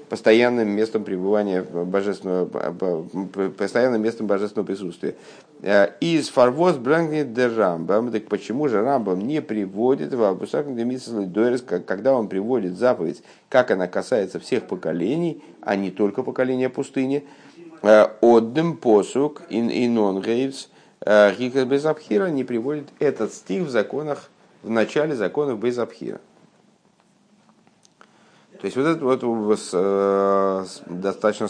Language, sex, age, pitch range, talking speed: Russian, male, 50-69, 100-145 Hz, 100 wpm